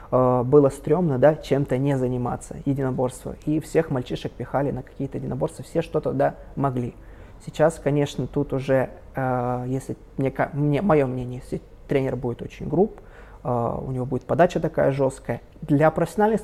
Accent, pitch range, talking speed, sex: native, 130-150 Hz, 155 wpm, male